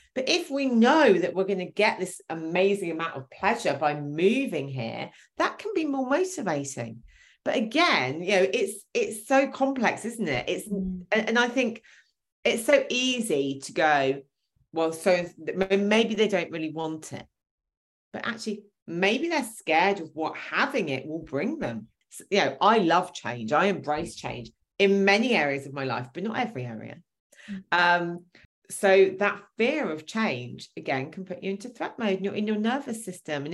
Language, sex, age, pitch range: English, female, 40-59, 155-230 Hz